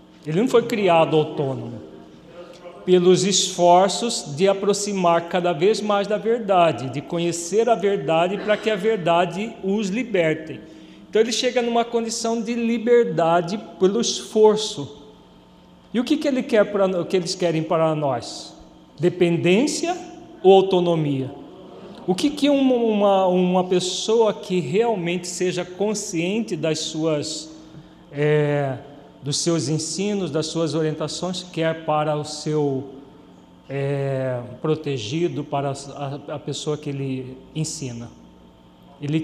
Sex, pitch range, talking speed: male, 155-200 Hz, 125 wpm